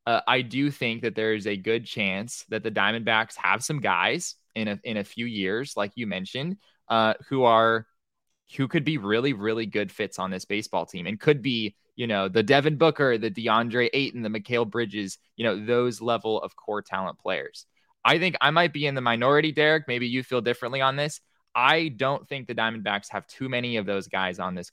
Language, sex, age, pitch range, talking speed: English, male, 20-39, 110-135 Hz, 210 wpm